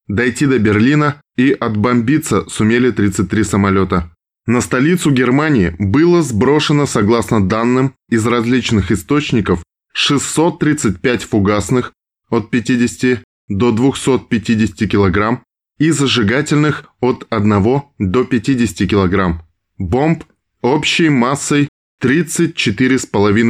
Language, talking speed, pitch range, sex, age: Russian, 90 wpm, 105-135 Hz, male, 20-39